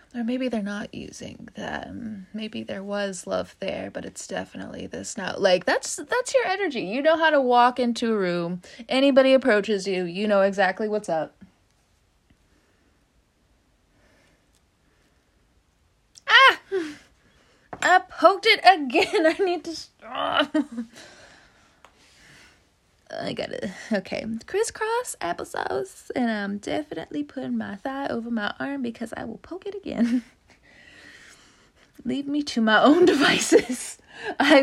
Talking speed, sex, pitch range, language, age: 130 wpm, female, 230-365 Hz, English, 20-39